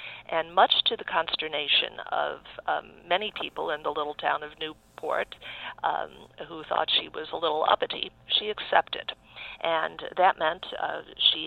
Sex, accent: female, American